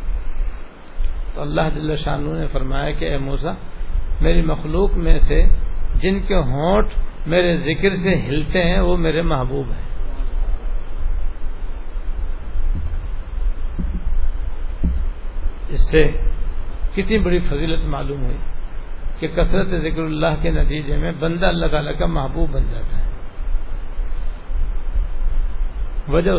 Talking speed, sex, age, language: 100 wpm, male, 60-79, Urdu